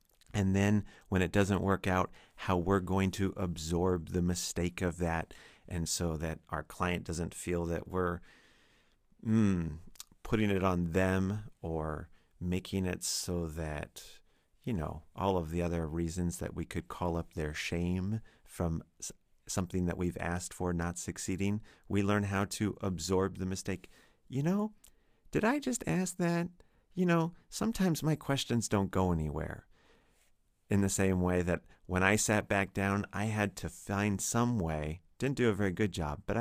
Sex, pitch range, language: male, 80-100 Hz, English